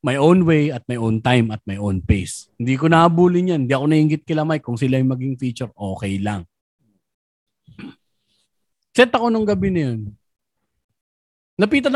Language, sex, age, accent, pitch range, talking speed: Filipino, male, 20-39, native, 115-145 Hz, 170 wpm